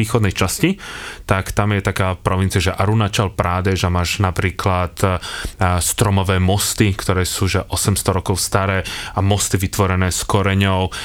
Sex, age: male, 30-49